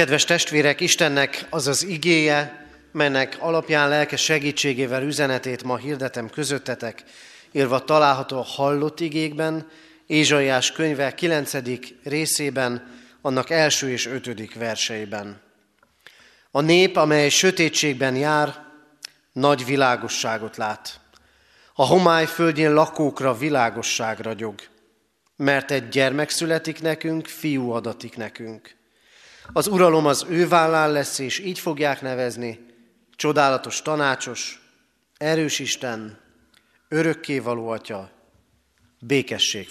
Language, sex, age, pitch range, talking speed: Hungarian, male, 30-49, 120-155 Hz, 100 wpm